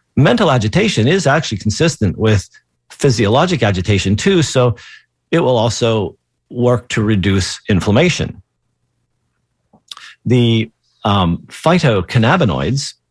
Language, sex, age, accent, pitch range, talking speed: English, male, 40-59, American, 105-135 Hz, 90 wpm